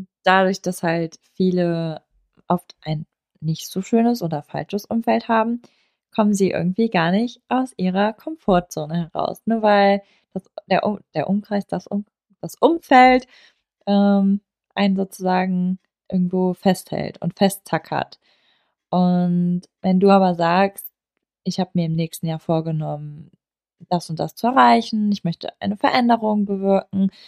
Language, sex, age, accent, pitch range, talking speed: German, female, 20-39, German, 175-215 Hz, 135 wpm